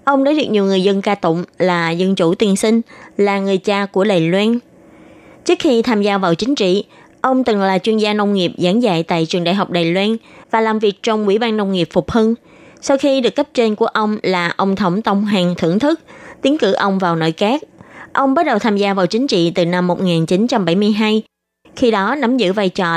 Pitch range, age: 185-240 Hz, 20-39